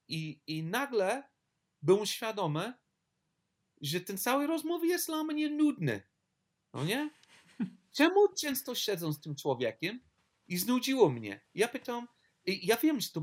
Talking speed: 140 wpm